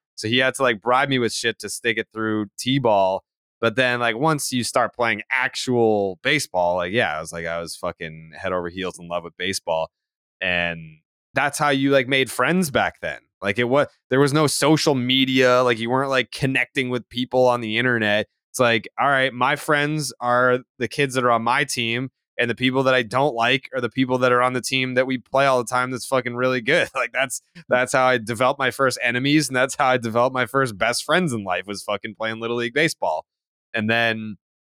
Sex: male